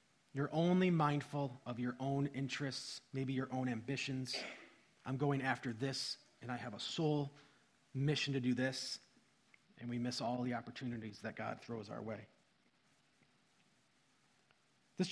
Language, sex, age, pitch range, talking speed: English, male, 30-49, 125-150 Hz, 145 wpm